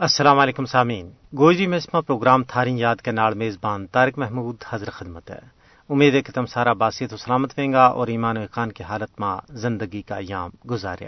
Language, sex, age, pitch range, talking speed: Urdu, male, 40-59, 120-145 Hz, 190 wpm